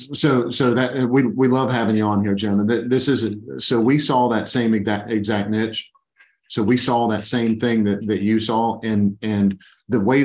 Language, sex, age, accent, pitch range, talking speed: English, male, 40-59, American, 105-115 Hz, 210 wpm